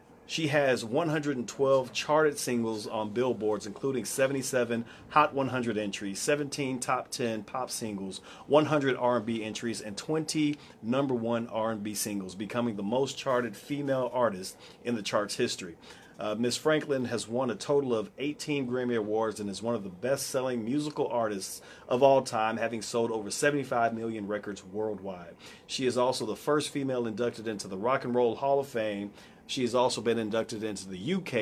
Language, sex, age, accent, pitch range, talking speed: English, male, 40-59, American, 110-135 Hz, 170 wpm